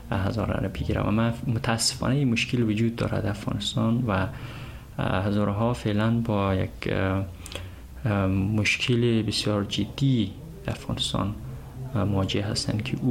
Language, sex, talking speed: Persian, male, 90 wpm